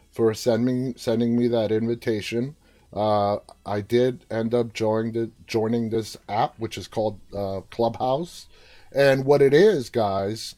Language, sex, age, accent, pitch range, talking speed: English, male, 30-49, American, 115-135 Hz, 135 wpm